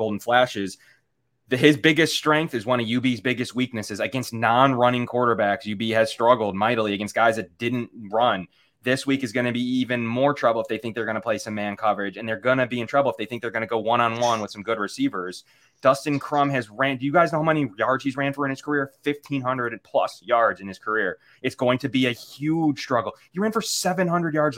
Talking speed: 235 wpm